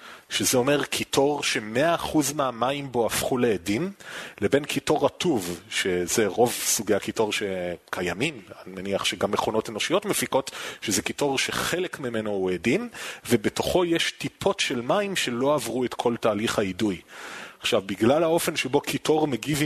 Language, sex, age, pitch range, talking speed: Hebrew, male, 30-49, 110-145 Hz, 140 wpm